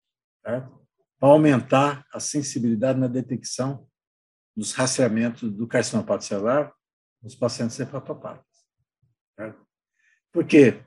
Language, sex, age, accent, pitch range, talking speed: Portuguese, male, 60-79, Brazilian, 120-175 Hz, 90 wpm